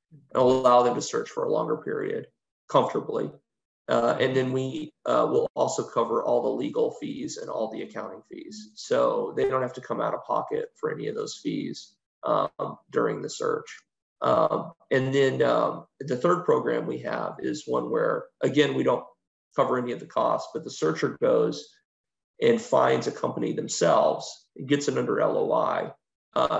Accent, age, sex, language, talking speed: American, 30-49, male, English, 180 wpm